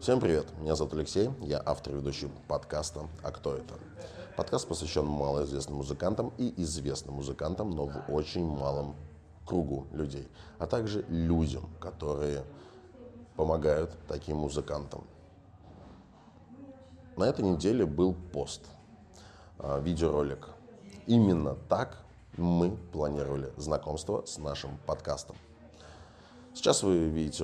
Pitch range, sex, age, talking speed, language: 75-95 Hz, male, 20-39, 110 wpm, Russian